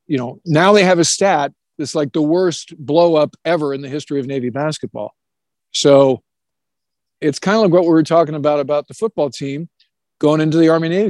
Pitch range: 145-170 Hz